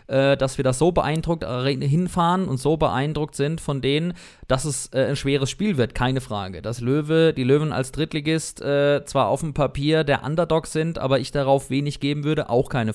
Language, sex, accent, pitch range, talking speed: German, male, German, 130-150 Hz, 200 wpm